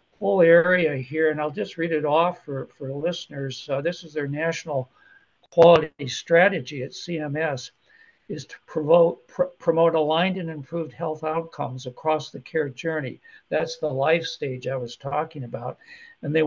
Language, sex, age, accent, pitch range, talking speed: English, male, 60-79, American, 145-170 Hz, 165 wpm